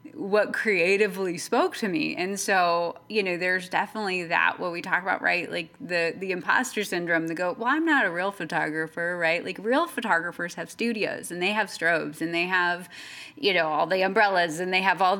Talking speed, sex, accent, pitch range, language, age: 205 wpm, female, American, 170-230 Hz, English, 20-39